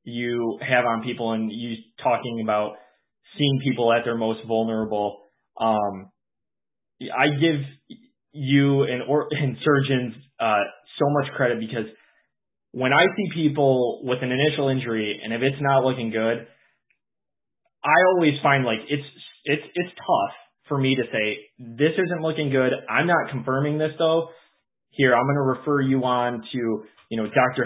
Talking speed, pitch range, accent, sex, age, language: 155 wpm, 115-140 Hz, American, male, 20-39, English